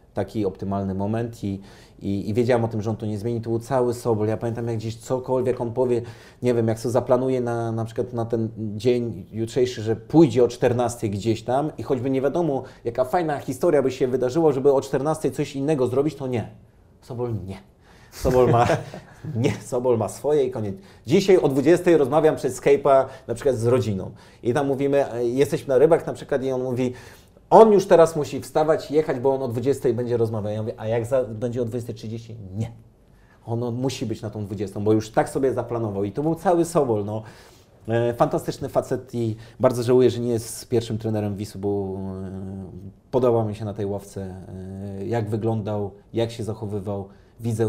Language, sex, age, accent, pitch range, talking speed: Polish, male, 30-49, native, 105-130 Hz, 195 wpm